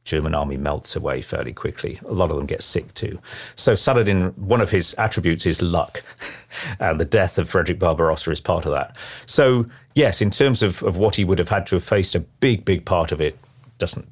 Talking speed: 220 wpm